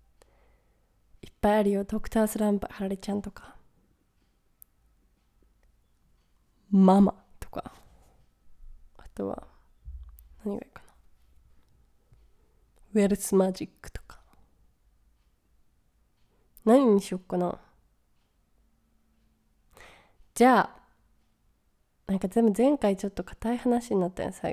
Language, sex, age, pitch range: Japanese, female, 20-39, 175-235 Hz